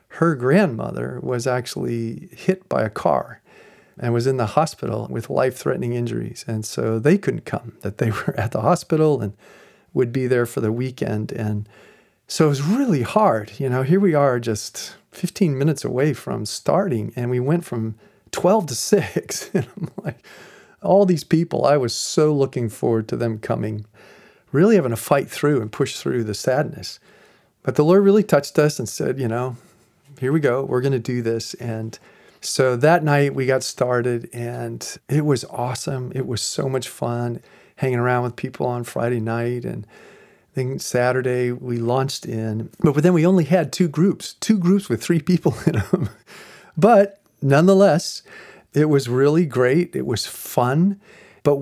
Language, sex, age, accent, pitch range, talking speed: English, male, 40-59, American, 120-165 Hz, 180 wpm